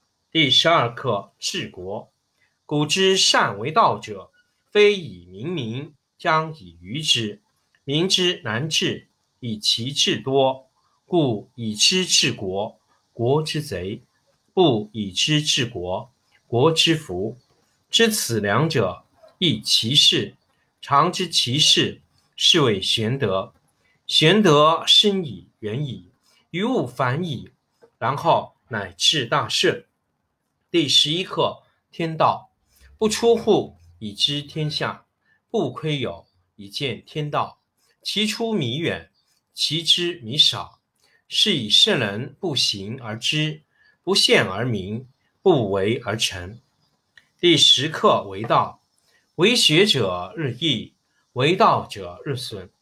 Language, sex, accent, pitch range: Chinese, male, native, 110-165 Hz